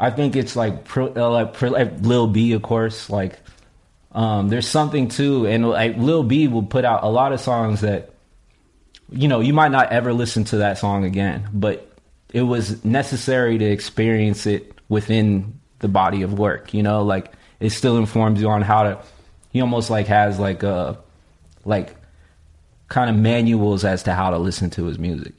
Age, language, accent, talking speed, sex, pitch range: 20-39, English, American, 185 wpm, male, 100-115 Hz